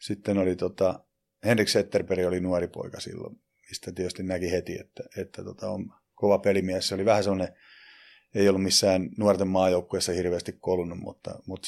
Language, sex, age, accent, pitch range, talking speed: Finnish, male, 30-49, native, 90-100 Hz, 165 wpm